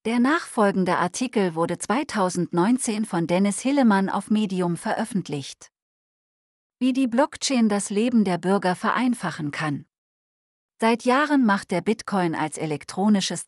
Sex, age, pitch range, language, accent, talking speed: female, 40-59, 170-225 Hz, German, German, 120 wpm